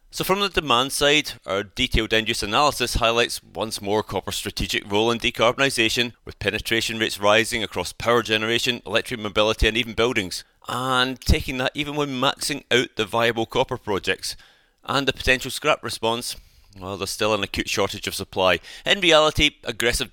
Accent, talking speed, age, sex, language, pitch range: British, 165 wpm, 30-49, male, English, 105-125 Hz